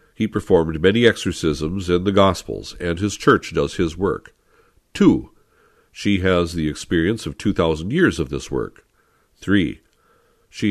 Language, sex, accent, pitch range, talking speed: English, male, American, 85-115 Hz, 145 wpm